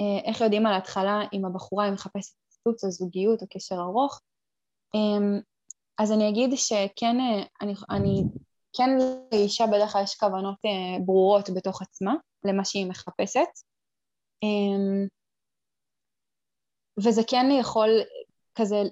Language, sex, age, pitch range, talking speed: Hebrew, female, 20-39, 195-225 Hz, 115 wpm